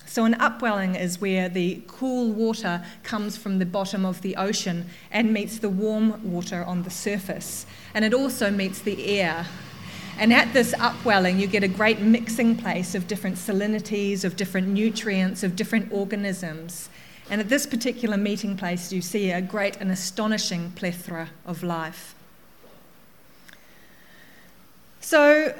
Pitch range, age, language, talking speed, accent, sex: 185-225 Hz, 40-59, English, 150 wpm, Australian, female